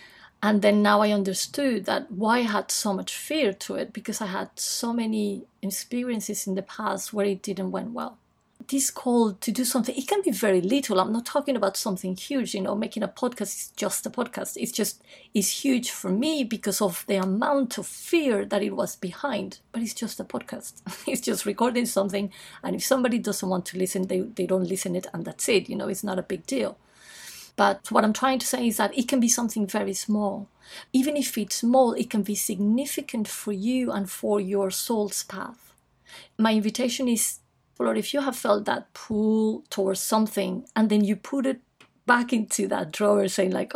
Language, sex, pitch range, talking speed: English, female, 200-245 Hz, 210 wpm